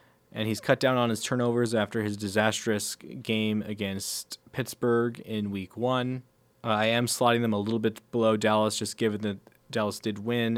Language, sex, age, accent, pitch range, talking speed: English, male, 20-39, American, 110-135 Hz, 175 wpm